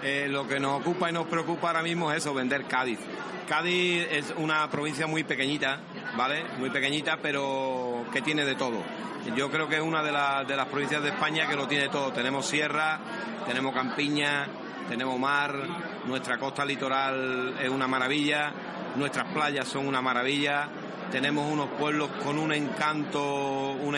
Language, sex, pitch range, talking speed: Spanish, male, 135-155 Hz, 165 wpm